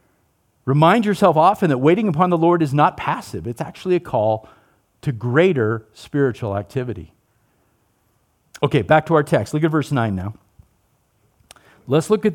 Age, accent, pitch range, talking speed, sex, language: 50-69, American, 120-170 Hz, 155 wpm, male, English